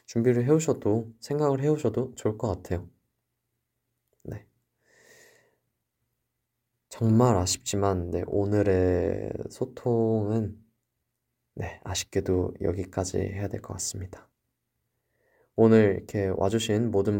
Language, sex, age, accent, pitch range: Korean, male, 20-39, native, 95-115 Hz